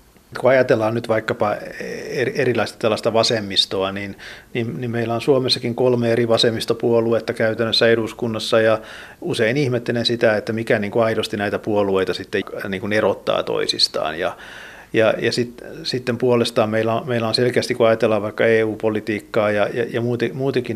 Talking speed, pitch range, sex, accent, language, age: 145 wpm, 110-120 Hz, male, native, Finnish, 50-69